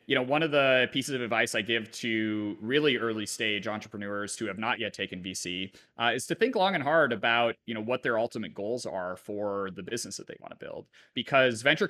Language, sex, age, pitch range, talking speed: English, male, 30-49, 110-135 Hz, 230 wpm